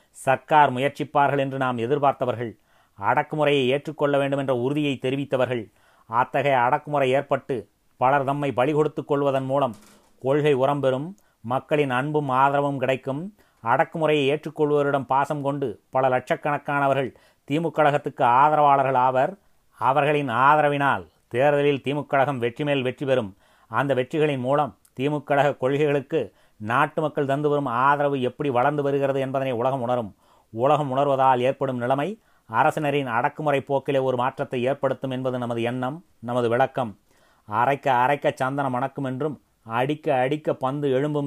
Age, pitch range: 30-49, 130-145 Hz